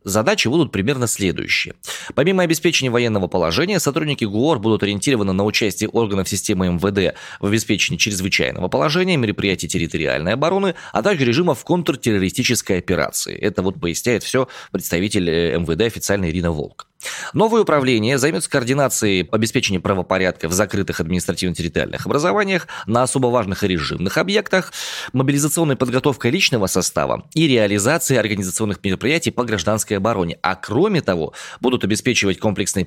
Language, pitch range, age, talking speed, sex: Russian, 95-140 Hz, 20-39, 130 wpm, male